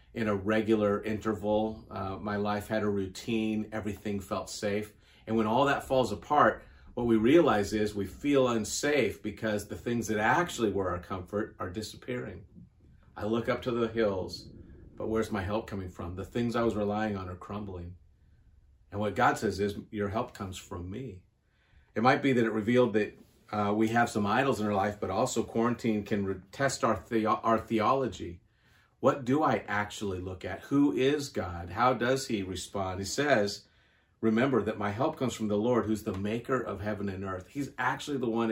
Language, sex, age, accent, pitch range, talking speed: English, male, 40-59, American, 100-115 Hz, 190 wpm